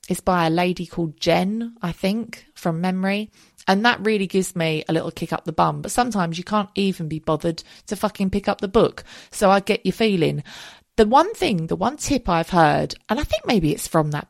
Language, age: English, 30-49